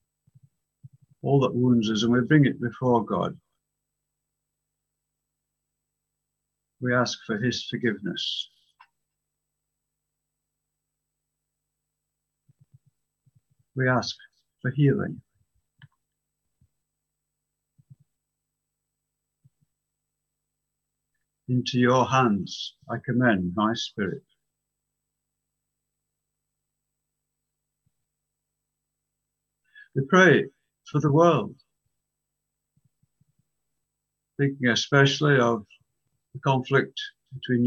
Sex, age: male, 60-79